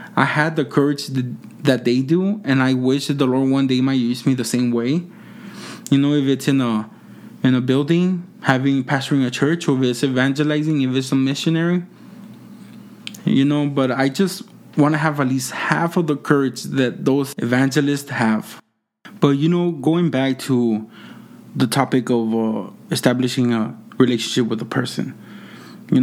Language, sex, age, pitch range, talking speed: English, male, 20-39, 115-145 Hz, 175 wpm